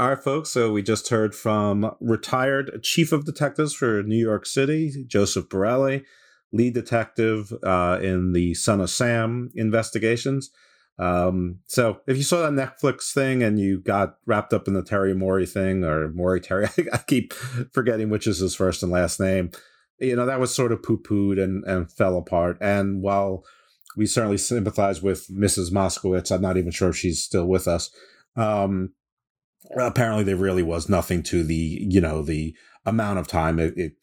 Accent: American